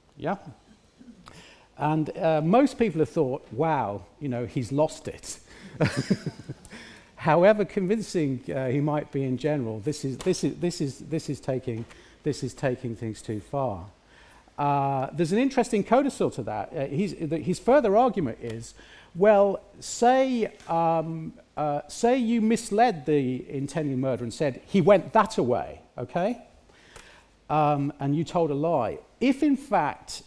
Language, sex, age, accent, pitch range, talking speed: English, male, 50-69, British, 135-200 Hz, 150 wpm